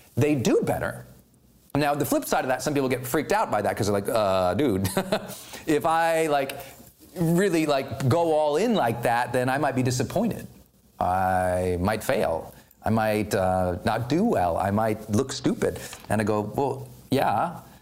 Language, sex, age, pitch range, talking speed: English, male, 40-59, 115-175 Hz, 180 wpm